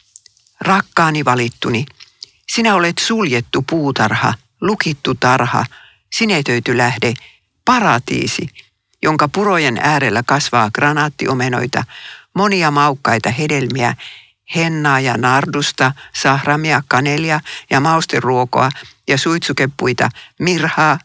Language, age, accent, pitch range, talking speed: Finnish, 60-79, native, 120-160 Hz, 85 wpm